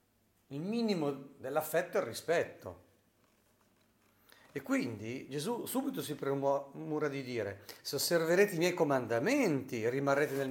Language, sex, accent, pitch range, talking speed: Italian, male, native, 110-140 Hz, 120 wpm